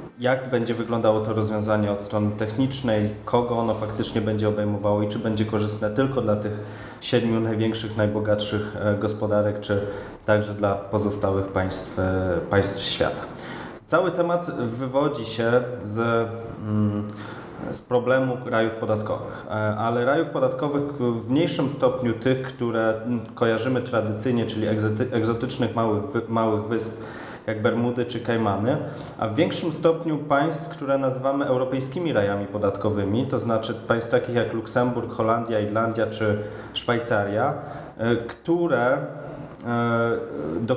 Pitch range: 105-130 Hz